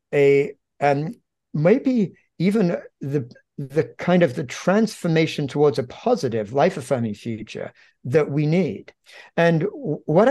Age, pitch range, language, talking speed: 60-79, 135-165 Hz, English, 130 wpm